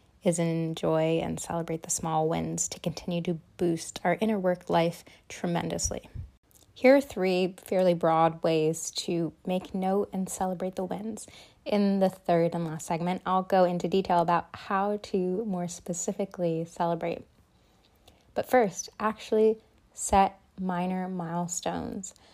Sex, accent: female, American